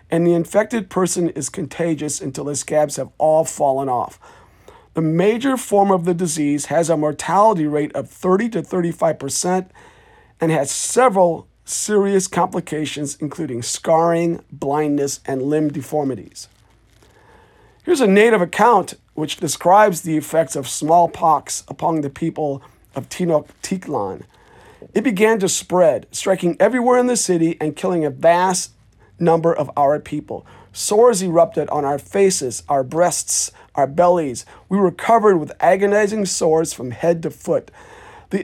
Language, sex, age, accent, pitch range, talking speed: English, male, 50-69, American, 150-190 Hz, 140 wpm